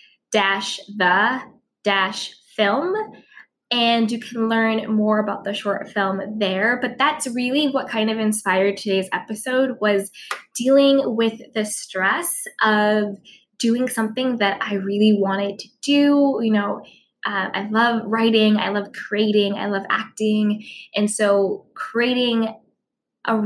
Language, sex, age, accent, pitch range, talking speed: English, female, 10-29, American, 200-230 Hz, 135 wpm